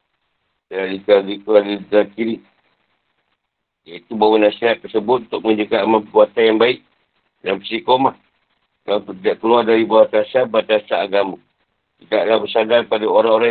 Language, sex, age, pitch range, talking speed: Malay, male, 50-69, 105-115 Hz, 125 wpm